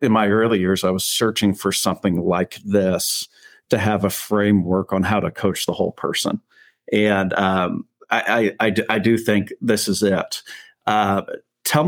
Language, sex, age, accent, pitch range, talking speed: English, male, 40-59, American, 95-115 Hz, 170 wpm